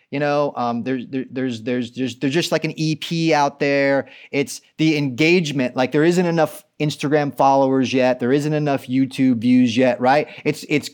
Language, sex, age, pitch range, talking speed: English, male, 30-49, 135-165 Hz, 180 wpm